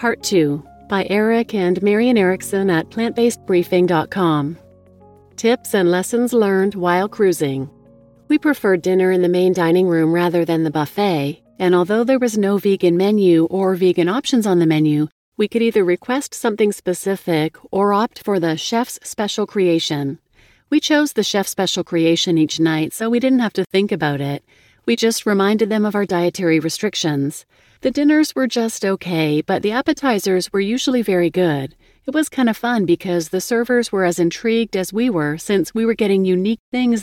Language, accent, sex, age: English, American, female, 40-59